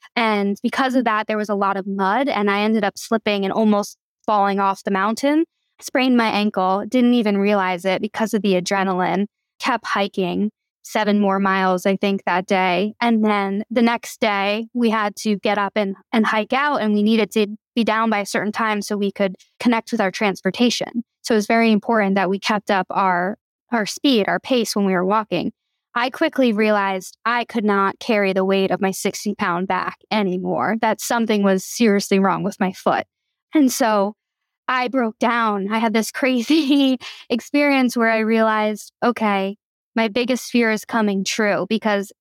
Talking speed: 190 wpm